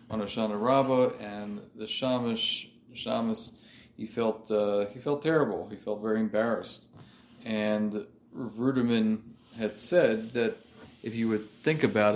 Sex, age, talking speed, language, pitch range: male, 40-59, 135 wpm, English, 105-115 Hz